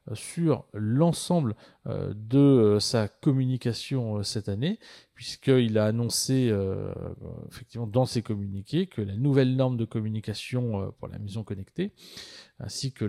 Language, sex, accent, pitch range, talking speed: French, male, French, 110-140 Hz, 120 wpm